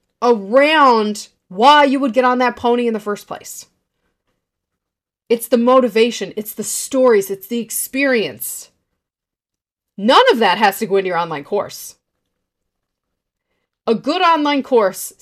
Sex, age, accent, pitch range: female, 30-49, American, 200-265 Hz